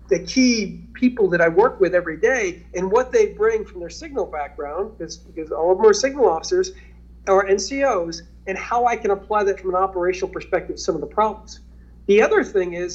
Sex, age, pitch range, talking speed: male, 40-59, 180-265 Hz, 210 wpm